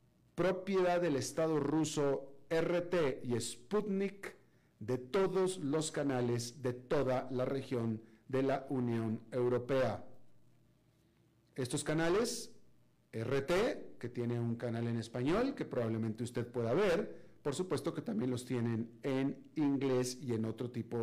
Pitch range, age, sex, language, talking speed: 120-160 Hz, 50-69, male, Spanish, 130 wpm